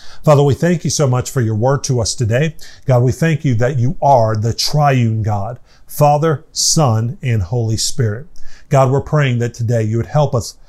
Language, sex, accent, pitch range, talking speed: English, male, American, 120-150 Hz, 200 wpm